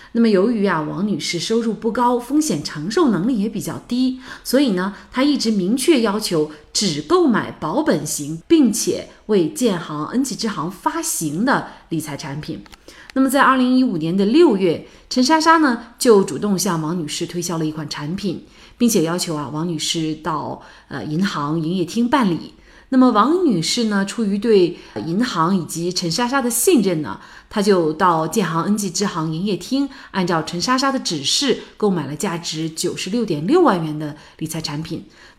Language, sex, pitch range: Chinese, female, 160-240 Hz